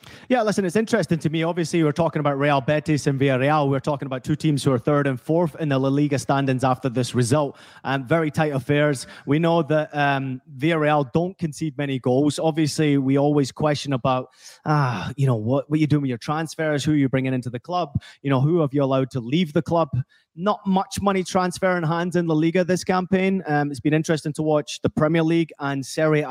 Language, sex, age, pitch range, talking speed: English, male, 30-49, 135-170 Hz, 230 wpm